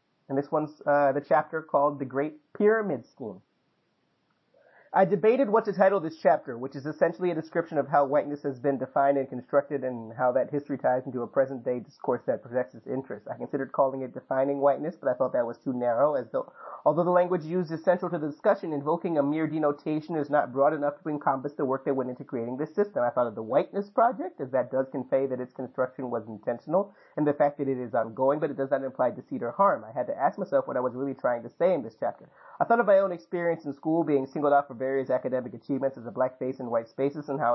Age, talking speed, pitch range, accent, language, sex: 30-49, 250 wpm, 130-160 Hz, American, English, male